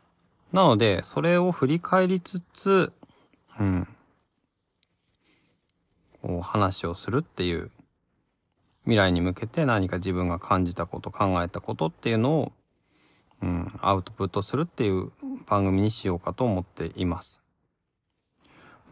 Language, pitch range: Japanese, 90-120 Hz